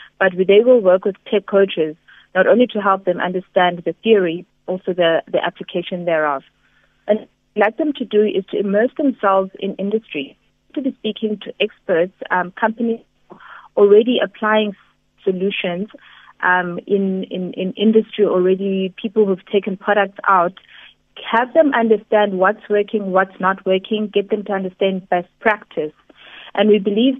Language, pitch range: English, 190-220 Hz